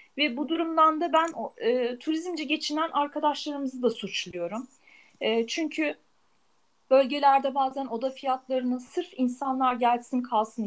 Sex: female